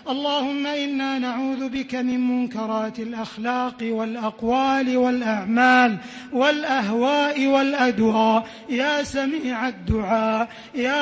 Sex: male